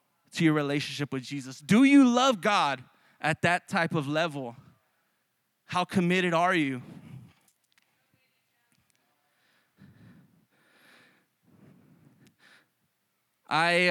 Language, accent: English, American